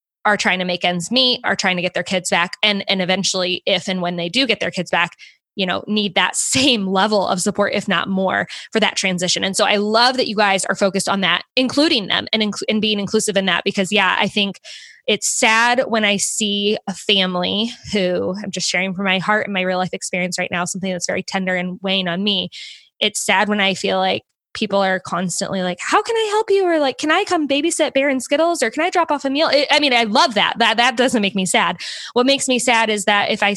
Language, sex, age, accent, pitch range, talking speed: English, female, 20-39, American, 190-250 Hz, 255 wpm